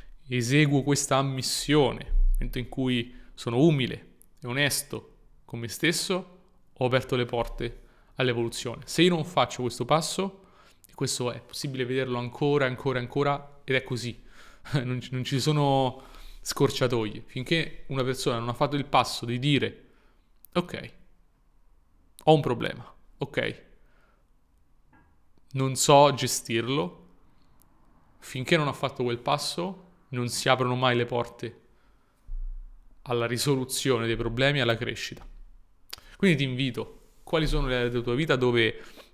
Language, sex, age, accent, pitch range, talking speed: Italian, male, 30-49, native, 120-145 Hz, 135 wpm